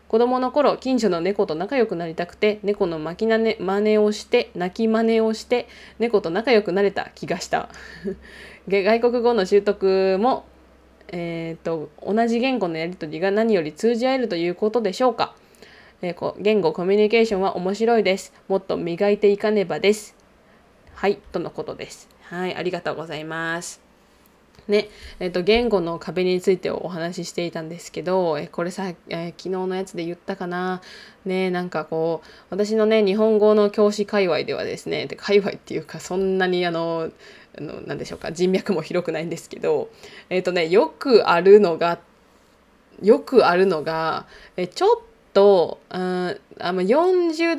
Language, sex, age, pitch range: Japanese, female, 20-39, 175-220 Hz